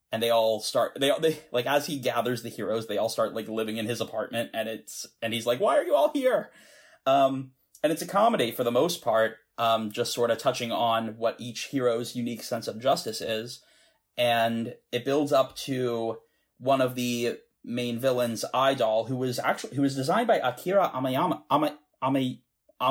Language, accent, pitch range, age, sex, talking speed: English, American, 115-145 Hz, 30-49, male, 190 wpm